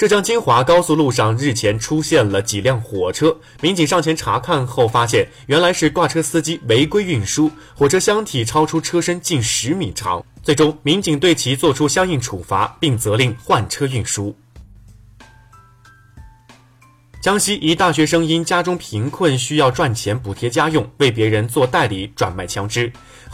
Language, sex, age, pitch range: Chinese, male, 20-39, 110-155 Hz